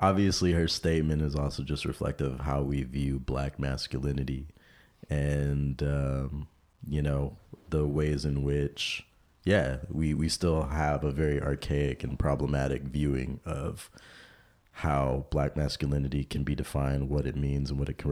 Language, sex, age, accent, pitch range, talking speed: English, male, 30-49, American, 70-85 Hz, 150 wpm